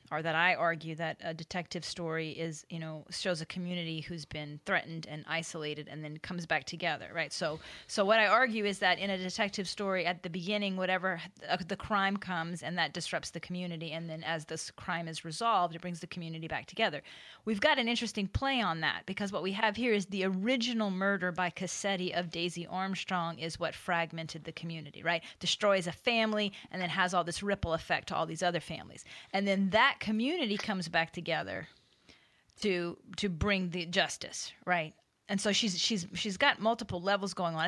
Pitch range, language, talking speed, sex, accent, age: 165-200 Hz, English, 200 wpm, female, American, 30-49